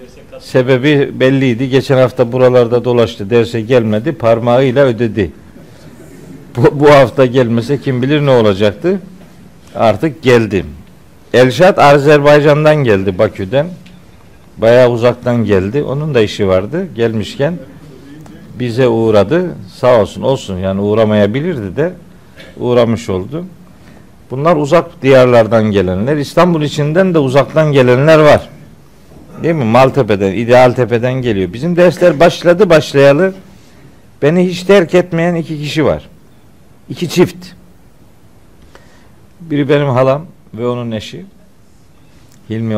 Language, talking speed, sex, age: Turkish, 110 wpm, male, 60-79